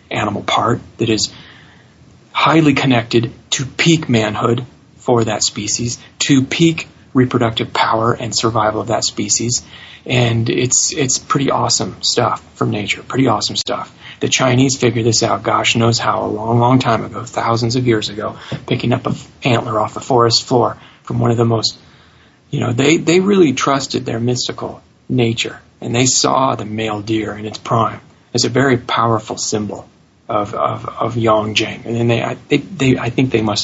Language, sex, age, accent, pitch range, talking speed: English, male, 30-49, American, 110-130 Hz, 175 wpm